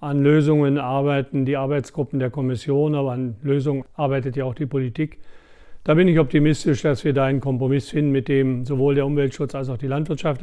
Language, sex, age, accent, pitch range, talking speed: German, male, 50-69, German, 135-155 Hz, 195 wpm